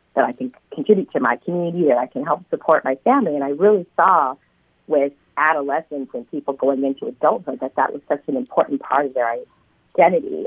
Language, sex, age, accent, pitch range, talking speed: English, female, 40-59, American, 135-170 Hz, 200 wpm